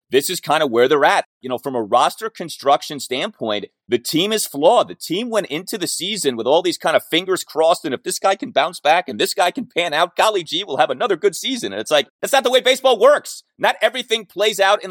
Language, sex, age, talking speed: English, male, 30-49, 260 wpm